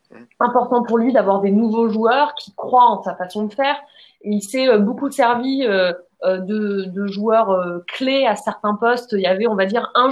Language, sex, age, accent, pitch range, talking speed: French, female, 20-39, French, 190-235 Hz, 195 wpm